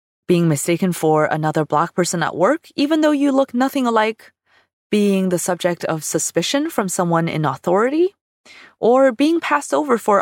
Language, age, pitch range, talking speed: English, 20-39, 150-220 Hz, 165 wpm